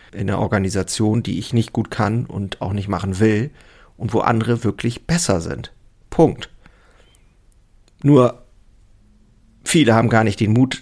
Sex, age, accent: male, 40-59, German